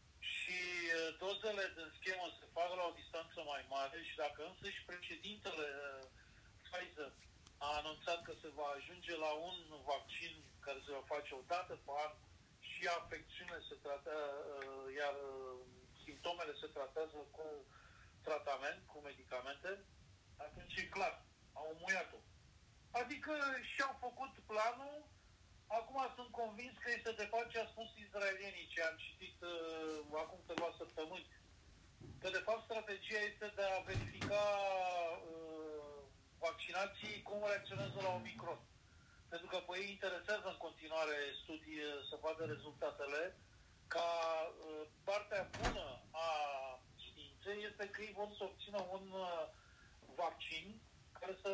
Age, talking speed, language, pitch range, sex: 40-59, 130 wpm, Romanian, 145-195 Hz, male